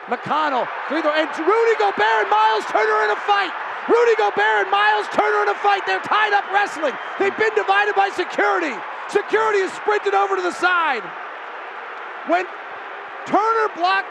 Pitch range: 300-390 Hz